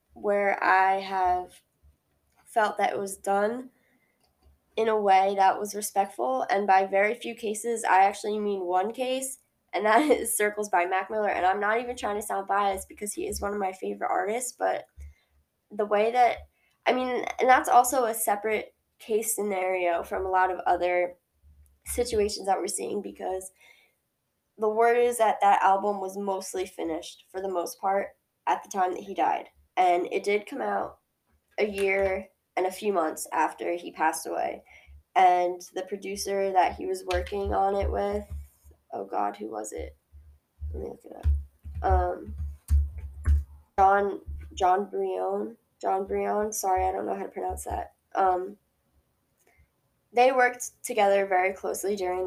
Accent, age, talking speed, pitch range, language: American, 10-29, 165 wpm, 125-215 Hz, English